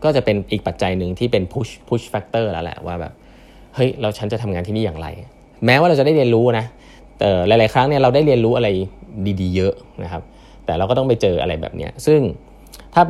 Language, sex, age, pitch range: Thai, male, 20-39, 95-120 Hz